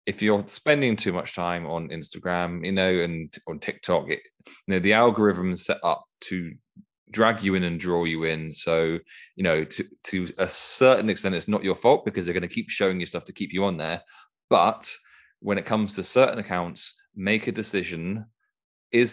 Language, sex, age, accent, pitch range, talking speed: English, male, 30-49, British, 85-105 Hz, 200 wpm